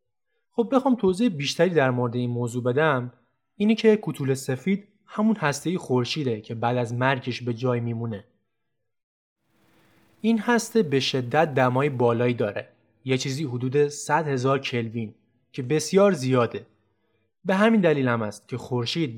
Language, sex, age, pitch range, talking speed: Persian, male, 20-39, 120-180 Hz, 145 wpm